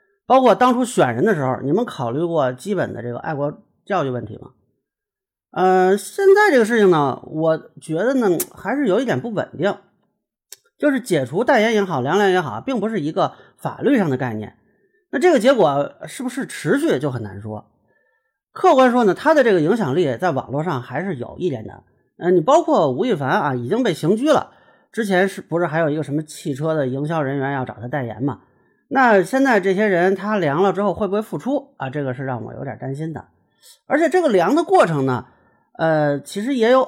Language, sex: Chinese, male